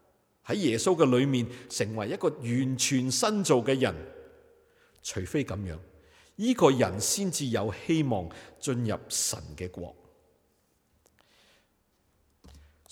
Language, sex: Chinese, male